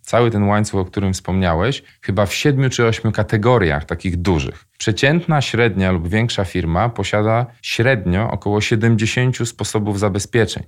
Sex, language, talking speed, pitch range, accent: male, Polish, 140 wpm, 100-120 Hz, native